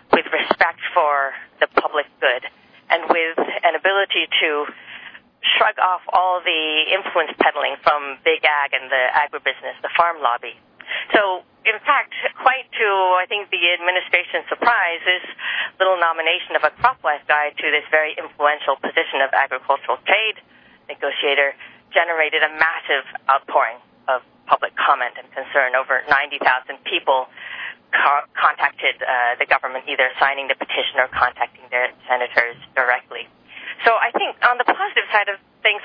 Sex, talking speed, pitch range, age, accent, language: female, 145 wpm, 140-185 Hz, 40-59, American, English